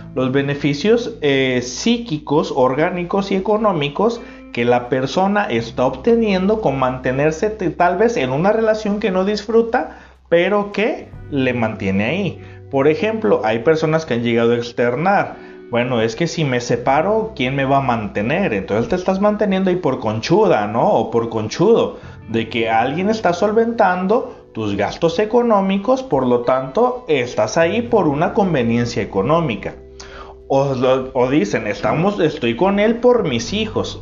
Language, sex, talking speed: Spanish, male, 150 wpm